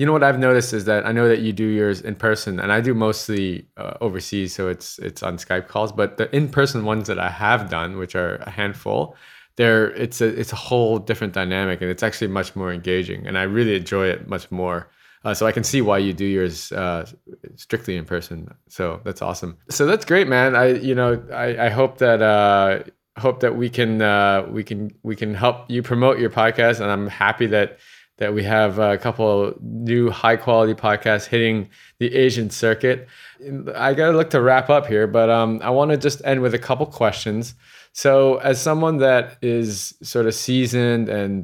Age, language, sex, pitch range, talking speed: 20-39, English, male, 95-120 Hz, 215 wpm